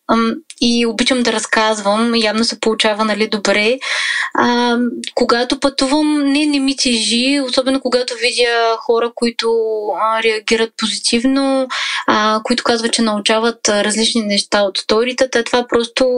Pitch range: 225-260 Hz